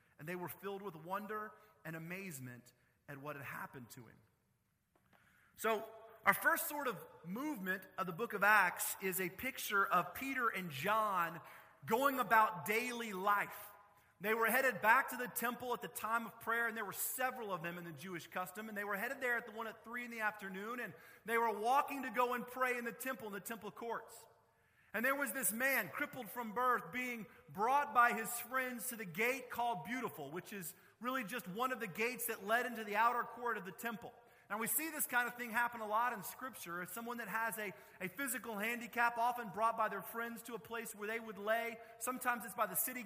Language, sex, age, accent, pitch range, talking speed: English, male, 40-59, American, 205-245 Hz, 220 wpm